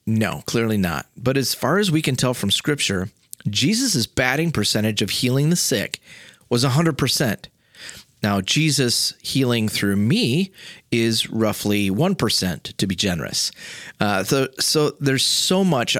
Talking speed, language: 145 wpm, English